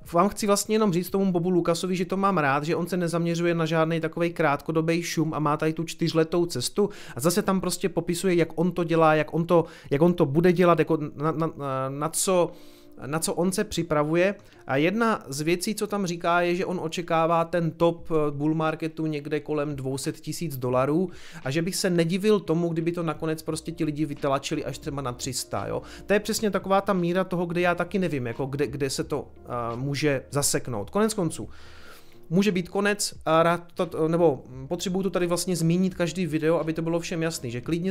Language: Czech